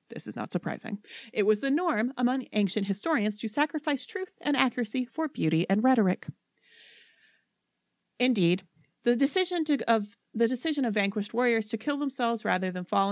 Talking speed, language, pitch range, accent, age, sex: 160 wpm, English, 180-255 Hz, American, 30-49, female